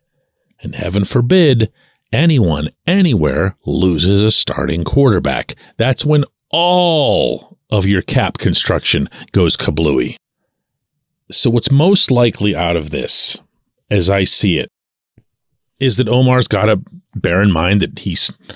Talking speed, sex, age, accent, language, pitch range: 125 wpm, male, 40-59, American, English, 105-175 Hz